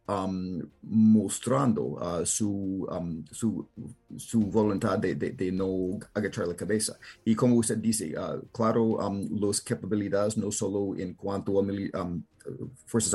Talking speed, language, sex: 145 wpm, Spanish, male